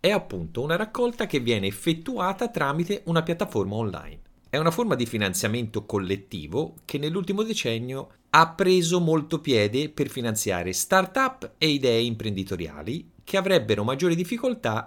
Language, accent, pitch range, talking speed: Italian, native, 100-165 Hz, 135 wpm